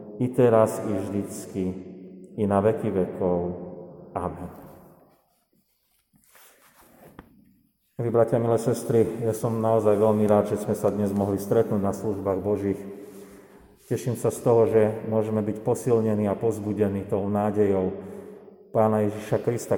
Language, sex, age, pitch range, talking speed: Slovak, male, 40-59, 100-120 Hz, 125 wpm